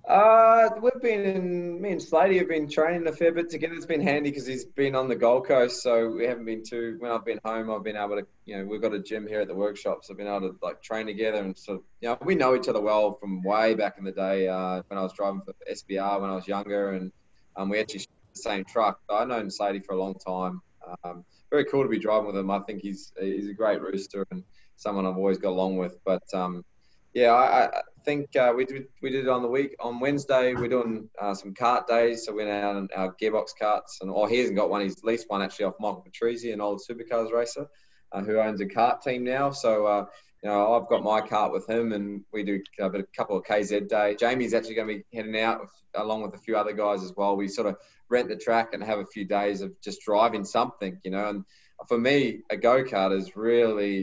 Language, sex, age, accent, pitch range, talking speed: English, male, 20-39, Australian, 100-120 Hz, 260 wpm